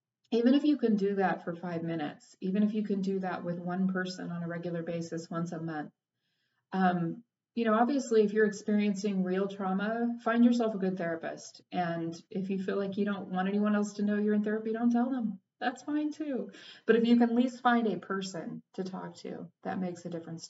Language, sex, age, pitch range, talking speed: English, female, 30-49, 170-210 Hz, 225 wpm